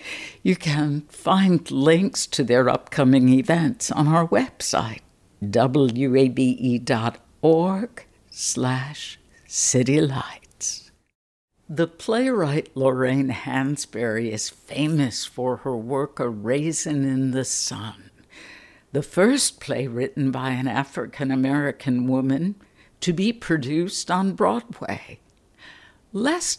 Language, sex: English, female